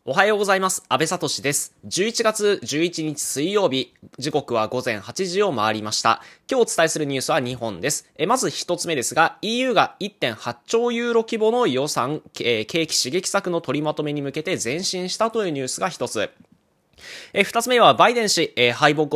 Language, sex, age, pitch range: Japanese, male, 20-39, 135-230 Hz